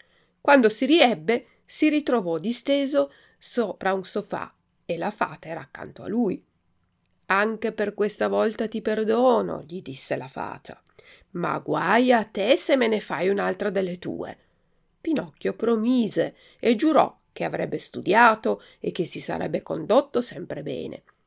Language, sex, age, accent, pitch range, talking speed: Italian, female, 40-59, native, 185-280 Hz, 145 wpm